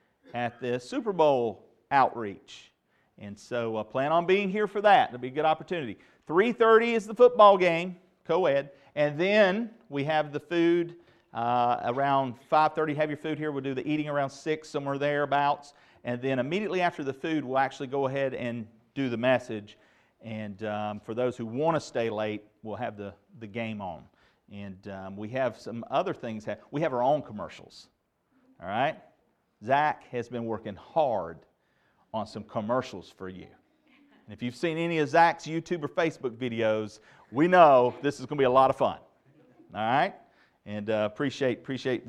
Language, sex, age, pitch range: English, male, 40-59, 120-190 Hz